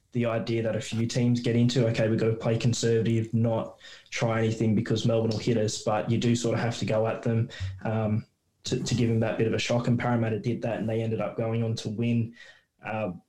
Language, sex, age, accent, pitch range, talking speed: English, male, 20-39, Australian, 110-120 Hz, 245 wpm